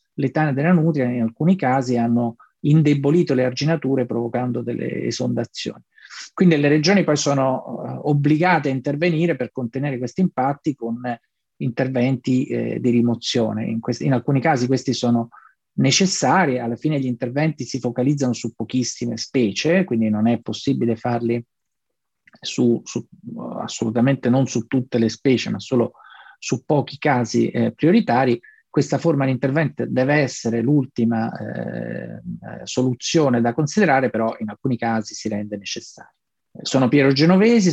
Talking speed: 140 wpm